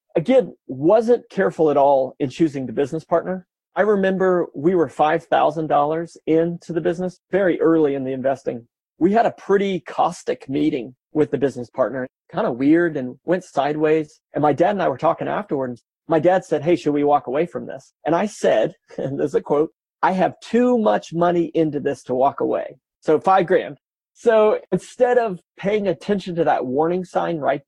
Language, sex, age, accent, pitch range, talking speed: English, male, 40-59, American, 145-175 Hz, 190 wpm